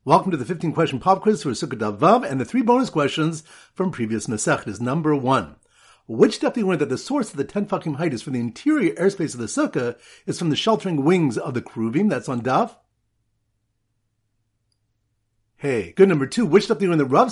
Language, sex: English, male